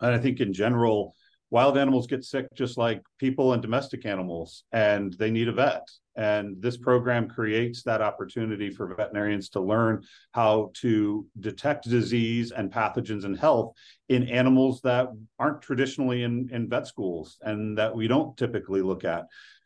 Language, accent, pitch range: English, American, 110-135 Hz